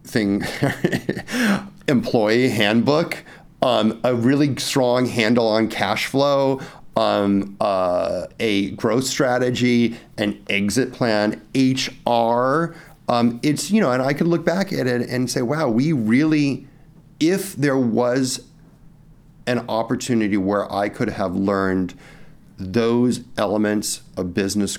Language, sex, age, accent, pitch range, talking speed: English, male, 40-59, American, 100-130 Hz, 120 wpm